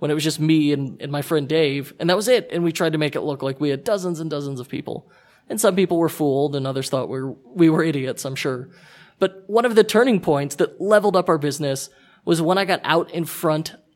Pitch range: 145-175 Hz